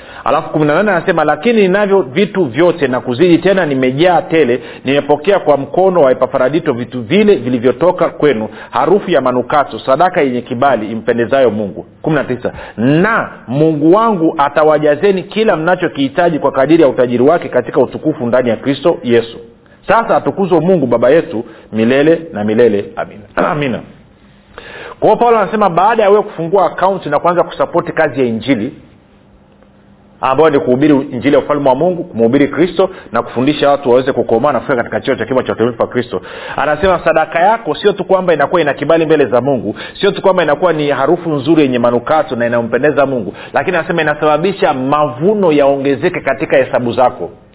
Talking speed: 160 wpm